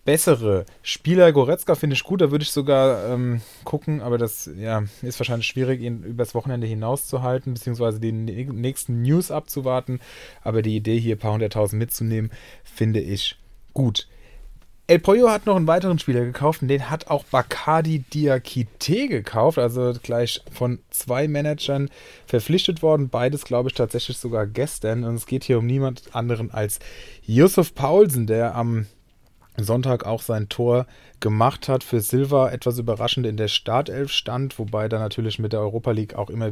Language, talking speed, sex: German, 170 wpm, male